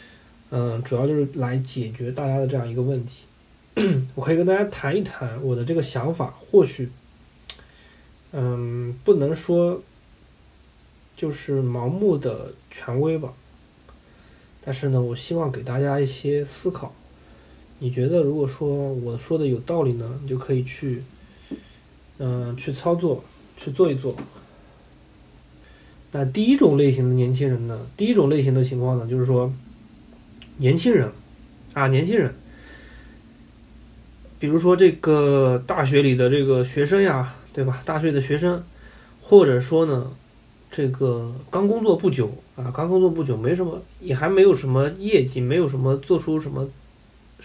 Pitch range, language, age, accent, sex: 125-160 Hz, Chinese, 20-39, native, male